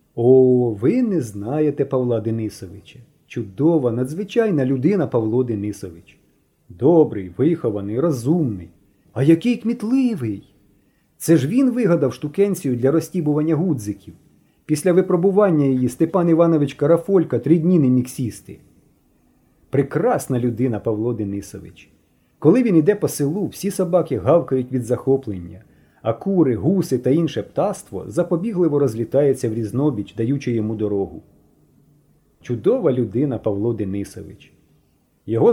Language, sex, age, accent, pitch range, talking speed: Ukrainian, male, 30-49, native, 110-165 Hz, 110 wpm